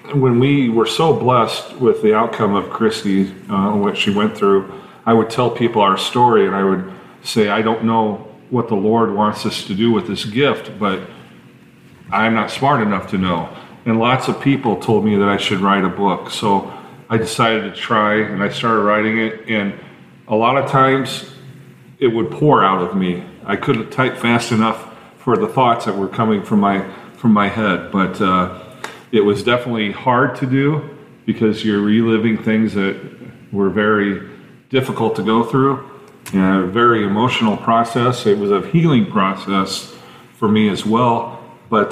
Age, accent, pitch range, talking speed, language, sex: 40-59, American, 100-125 Hz, 185 wpm, English, male